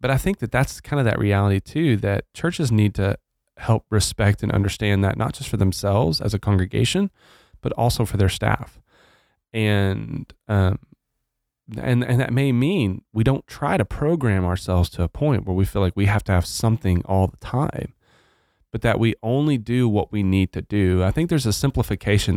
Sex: male